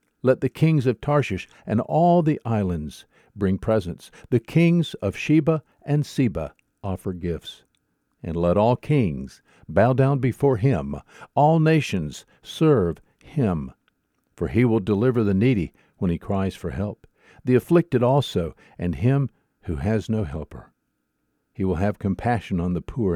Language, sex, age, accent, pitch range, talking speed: English, male, 60-79, American, 90-130 Hz, 150 wpm